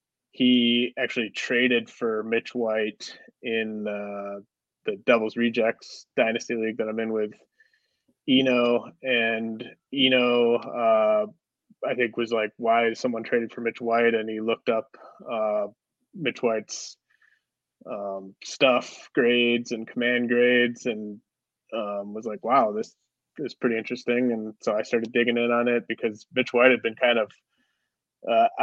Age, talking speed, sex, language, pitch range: 20-39, 145 wpm, male, English, 110-125 Hz